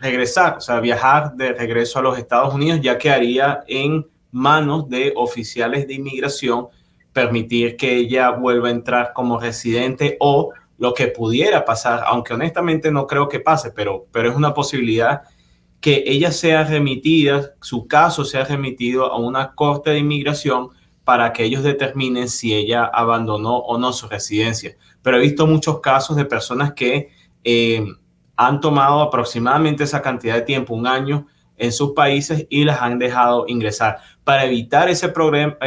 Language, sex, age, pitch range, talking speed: Spanish, male, 30-49, 120-145 Hz, 165 wpm